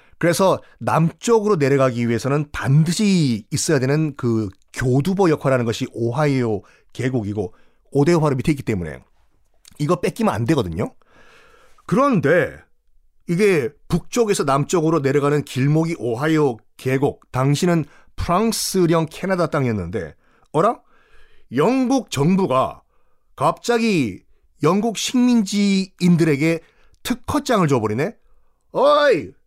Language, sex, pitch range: Korean, male, 135-225 Hz